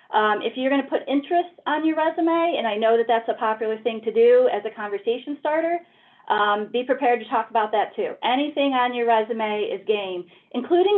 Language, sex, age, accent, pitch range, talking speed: English, female, 40-59, American, 210-270 Hz, 215 wpm